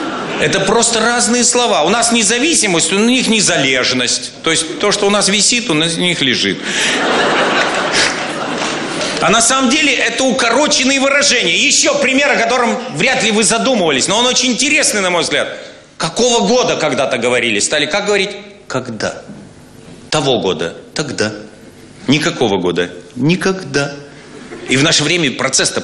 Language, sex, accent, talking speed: Russian, male, native, 140 wpm